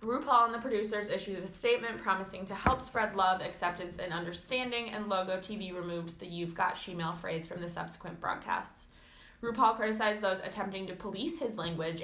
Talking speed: 180 wpm